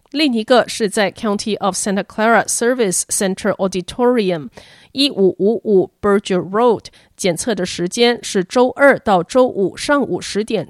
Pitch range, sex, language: 190-245 Hz, female, Chinese